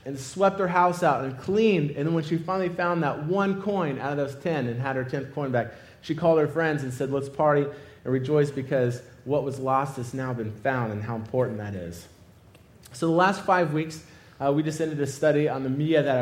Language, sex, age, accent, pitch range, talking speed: English, male, 30-49, American, 130-170 Hz, 235 wpm